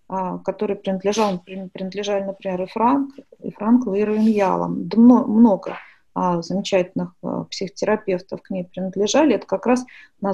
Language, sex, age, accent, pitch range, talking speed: Russian, female, 20-39, native, 185-235 Hz, 120 wpm